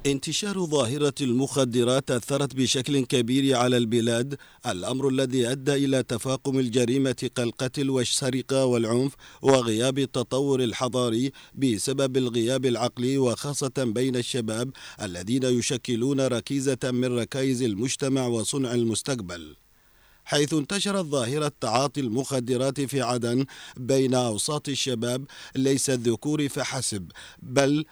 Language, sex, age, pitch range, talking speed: Arabic, male, 40-59, 125-145 Hz, 105 wpm